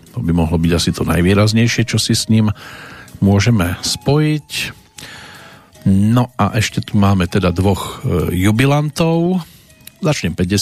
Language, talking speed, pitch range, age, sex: Slovak, 125 wpm, 95-115 Hz, 40-59, male